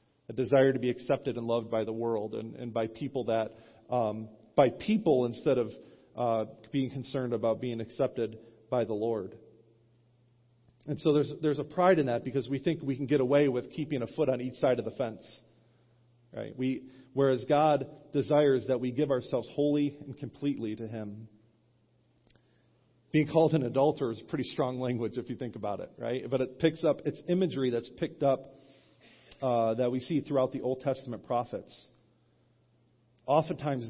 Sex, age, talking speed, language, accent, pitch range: male, 40-59, 180 wpm, English, American, 115-140 Hz